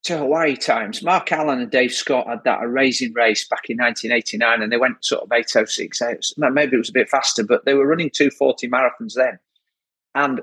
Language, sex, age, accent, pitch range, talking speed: English, male, 40-59, British, 115-155 Hz, 200 wpm